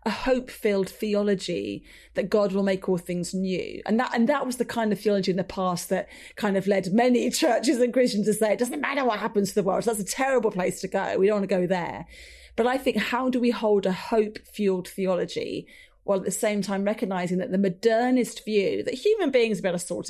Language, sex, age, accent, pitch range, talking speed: English, female, 30-49, British, 185-230 Hz, 235 wpm